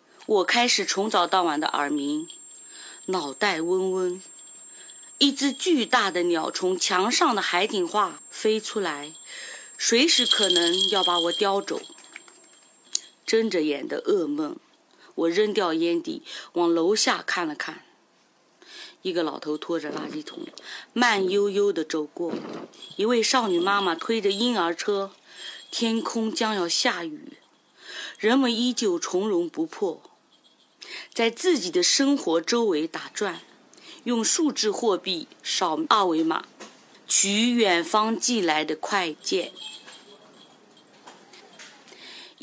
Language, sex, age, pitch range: Chinese, female, 30-49, 195-330 Hz